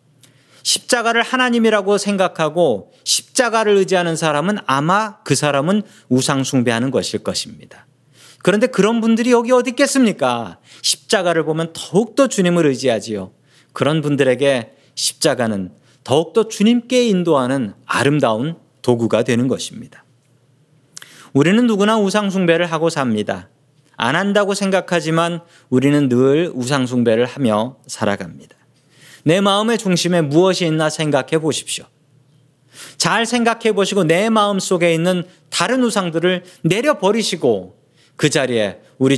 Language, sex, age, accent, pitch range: Korean, male, 40-59, native, 135-195 Hz